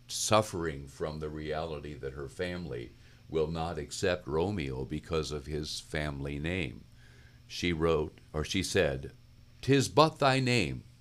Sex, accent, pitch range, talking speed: male, American, 80-115 Hz, 135 wpm